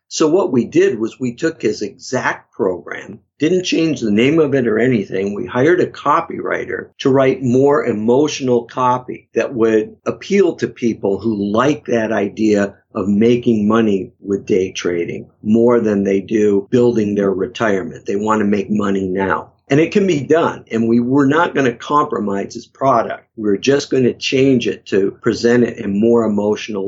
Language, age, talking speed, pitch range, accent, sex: English, 50-69, 185 wpm, 105-130 Hz, American, male